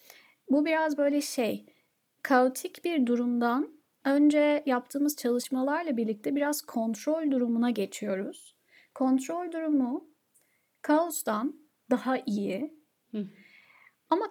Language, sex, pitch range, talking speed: Turkish, female, 225-290 Hz, 90 wpm